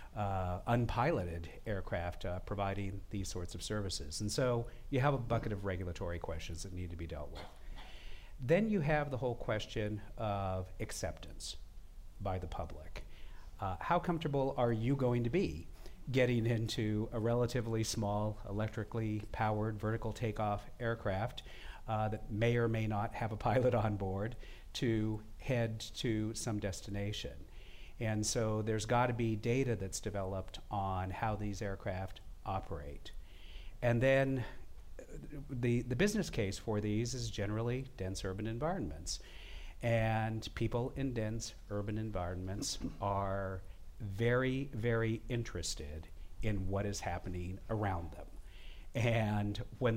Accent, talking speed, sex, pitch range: American, 135 wpm, male, 95-115 Hz